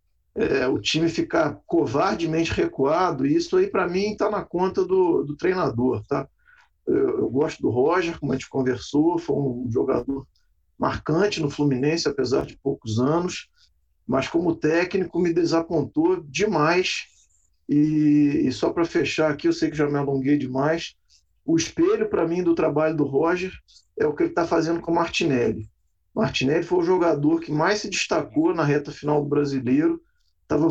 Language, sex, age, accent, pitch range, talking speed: Portuguese, male, 50-69, Brazilian, 140-185 Hz, 170 wpm